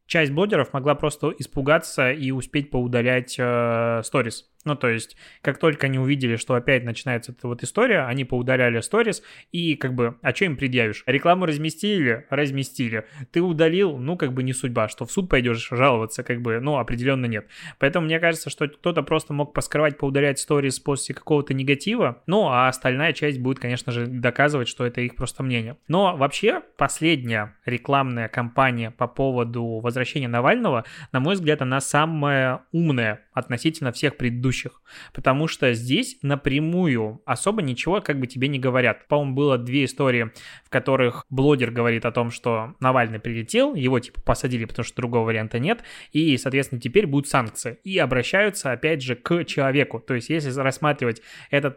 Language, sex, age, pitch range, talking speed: Russian, male, 20-39, 125-150 Hz, 170 wpm